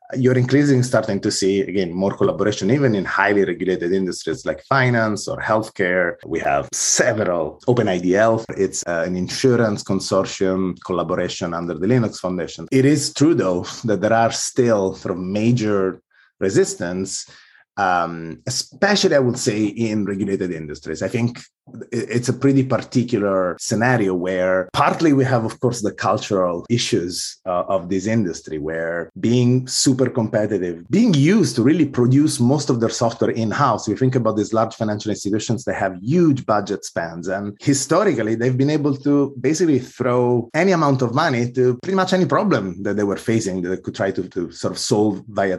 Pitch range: 95-130 Hz